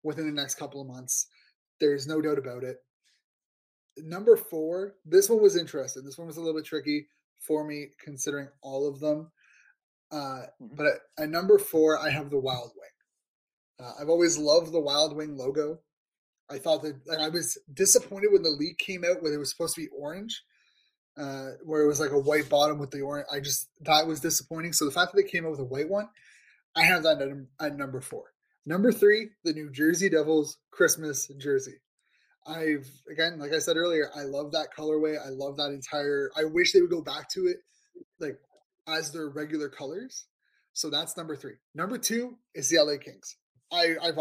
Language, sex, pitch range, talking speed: English, male, 145-170 Hz, 205 wpm